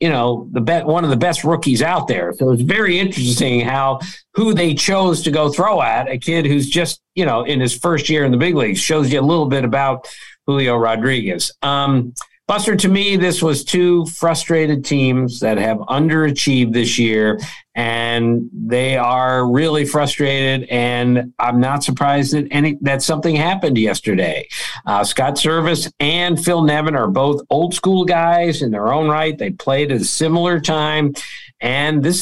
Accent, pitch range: American, 130-170 Hz